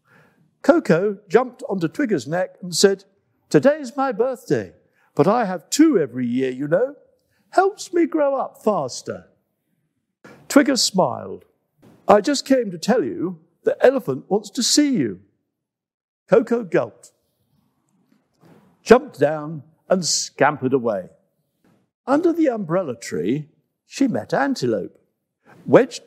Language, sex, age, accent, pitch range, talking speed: English, male, 60-79, British, 160-270 Hz, 120 wpm